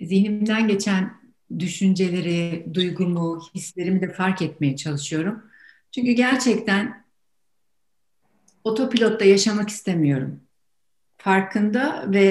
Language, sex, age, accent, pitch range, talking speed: Turkish, female, 60-79, native, 170-225 Hz, 80 wpm